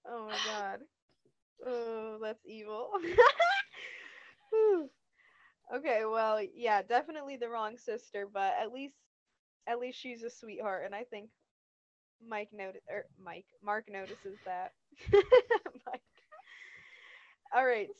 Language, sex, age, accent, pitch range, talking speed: English, female, 20-39, American, 195-235 Hz, 110 wpm